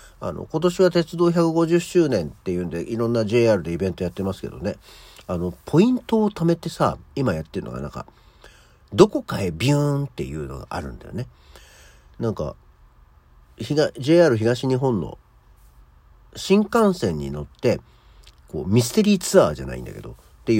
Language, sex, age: Japanese, male, 50-69